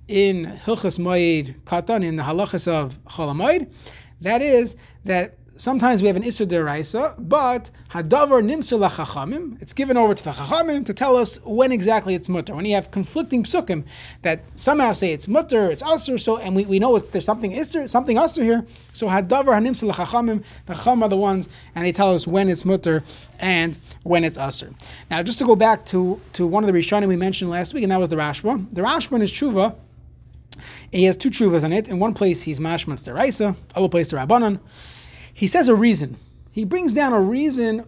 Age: 30-49